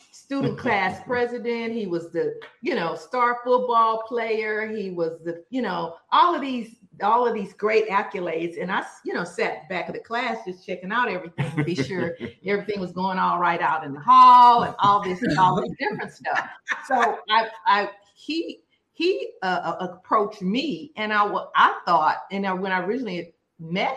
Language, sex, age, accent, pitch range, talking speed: English, female, 40-59, American, 175-245 Hz, 185 wpm